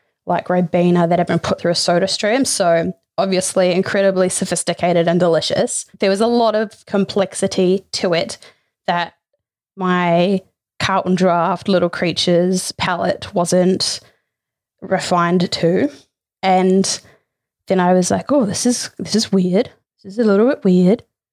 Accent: Australian